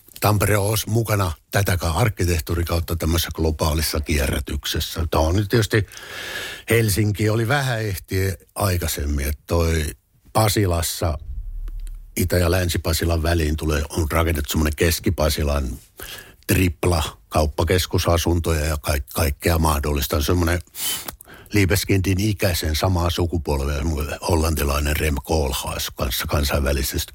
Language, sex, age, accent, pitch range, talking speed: Finnish, male, 60-79, native, 80-105 Hz, 100 wpm